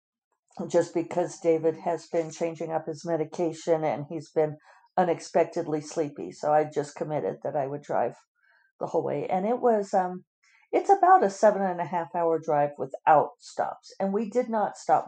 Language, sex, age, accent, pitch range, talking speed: English, female, 50-69, American, 155-200 Hz, 180 wpm